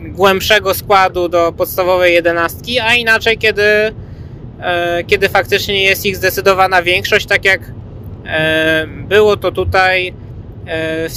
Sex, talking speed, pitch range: male, 105 wpm, 160-195 Hz